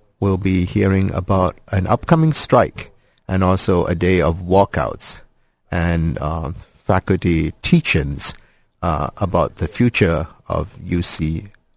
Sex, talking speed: male, 110 wpm